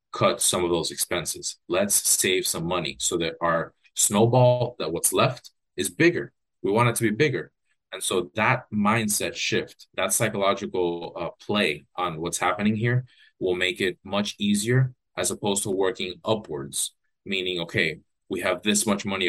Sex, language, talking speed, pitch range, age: male, English, 170 wpm, 90-115 Hz, 30-49